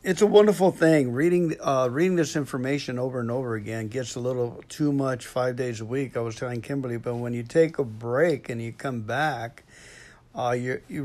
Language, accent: English, American